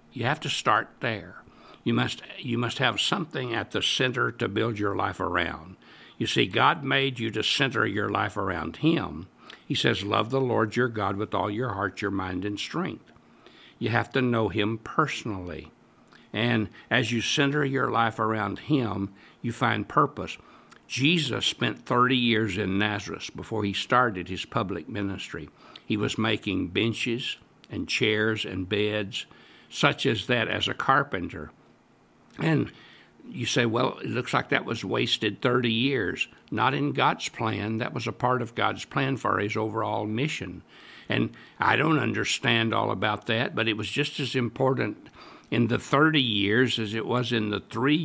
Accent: American